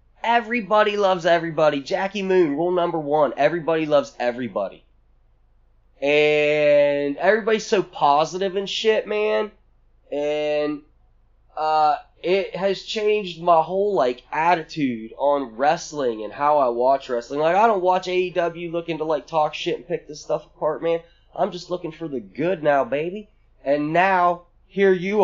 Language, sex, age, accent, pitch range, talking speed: English, male, 20-39, American, 120-165 Hz, 145 wpm